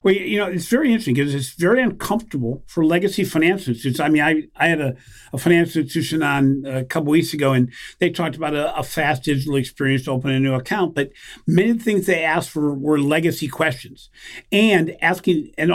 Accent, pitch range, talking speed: American, 130-175 Hz, 215 wpm